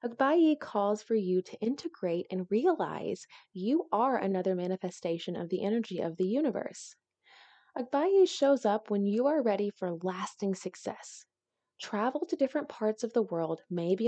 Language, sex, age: English, female, 20-39